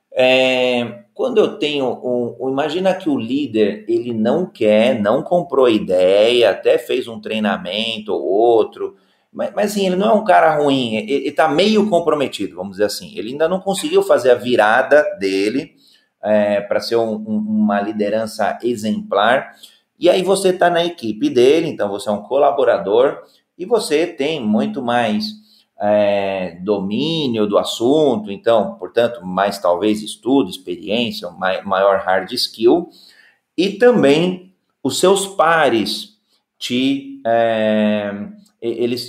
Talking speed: 130 wpm